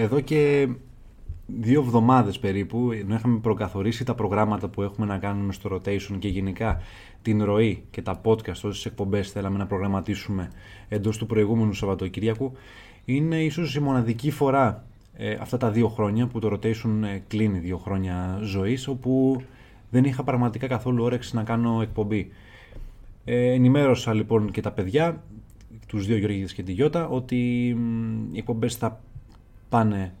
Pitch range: 105-125 Hz